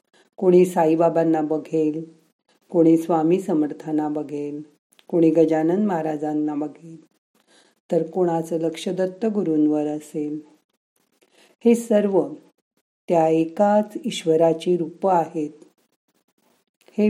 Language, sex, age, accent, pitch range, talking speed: Marathi, female, 50-69, native, 155-180 Hz, 90 wpm